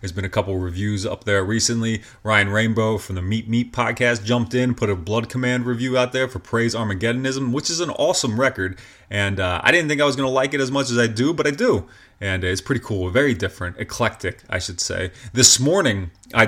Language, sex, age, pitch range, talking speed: English, male, 30-49, 100-130 Hz, 235 wpm